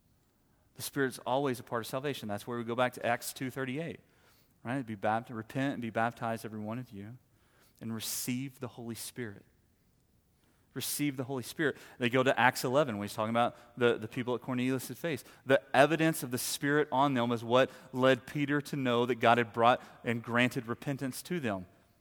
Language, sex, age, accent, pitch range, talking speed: English, male, 30-49, American, 115-130 Hz, 200 wpm